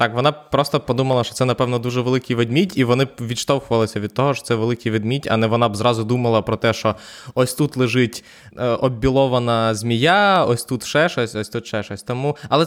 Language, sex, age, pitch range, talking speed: Ukrainian, male, 20-39, 120-145 Hz, 215 wpm